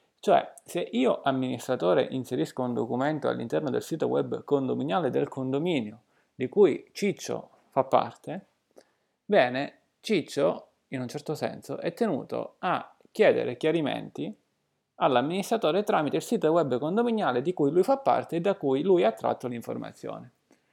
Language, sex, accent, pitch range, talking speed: Italian, male, native, 130-195 Hz, 140 wpm